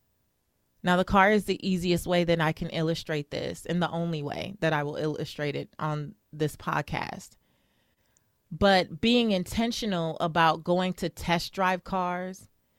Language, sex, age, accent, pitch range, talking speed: English, female, 30-49, American, 165-200 Hz, 155 wpm